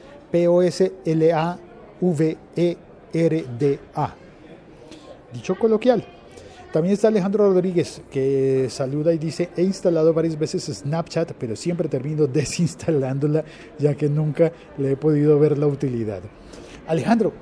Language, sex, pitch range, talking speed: Spanish, male, 115-170 Hz, 115 wpm